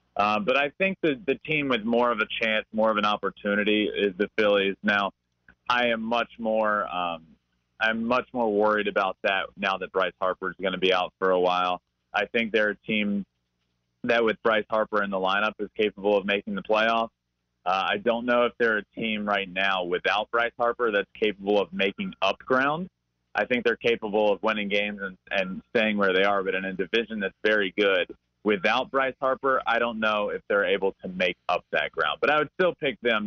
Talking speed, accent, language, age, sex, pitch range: 215 wpm, American, English, 30-49, male, 95-120 Hz